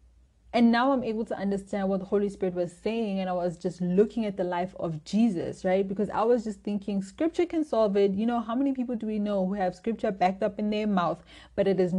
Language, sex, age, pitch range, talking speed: English, female, 20-39, 185-215 Hz, 255 wpm